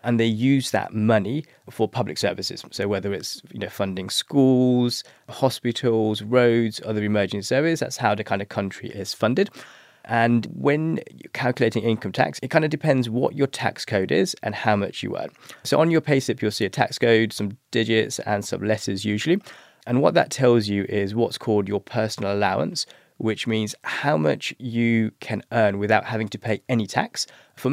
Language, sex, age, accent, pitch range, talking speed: English, male, 20-39, British, 105-125 Hz, 190 wpm